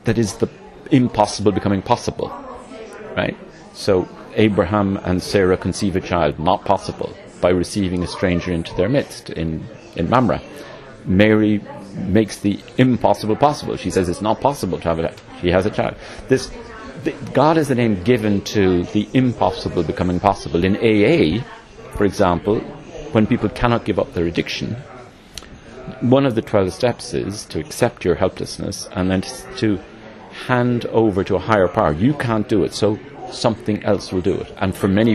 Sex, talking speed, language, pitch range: male, 165 wpm, English, 90-115 Hz